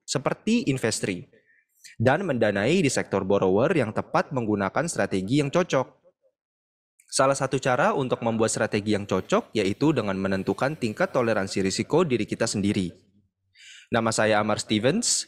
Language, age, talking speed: Indonesian, 20-39, 135 wpm